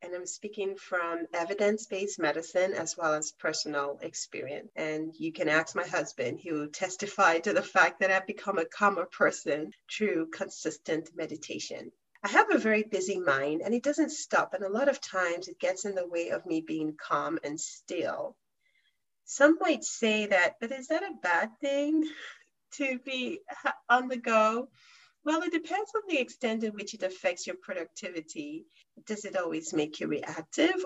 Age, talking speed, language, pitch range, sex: 40-59, 175 wpm, English, 180-280 Hz, female